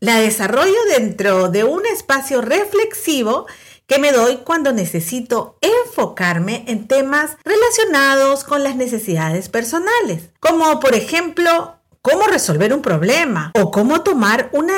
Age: 50-69